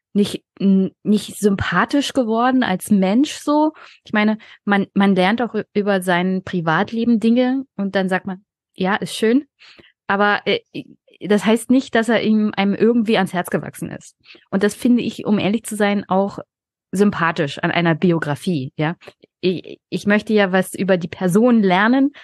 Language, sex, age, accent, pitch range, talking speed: German, female, 20-39, German, 175-210 Hz, 160 wpm